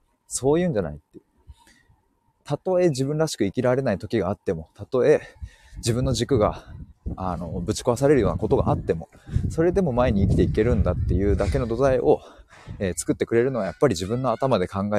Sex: male